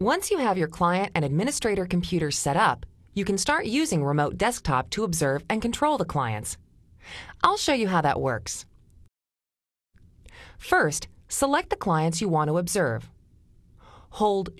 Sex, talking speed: female, 150 wpm